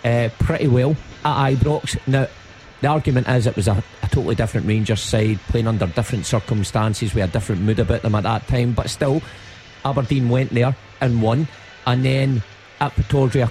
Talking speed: 185 wpm